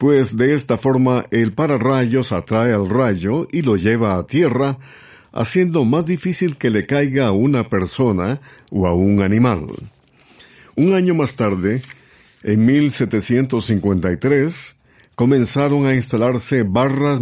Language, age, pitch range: Spanish, 50-69, 105-140 Hz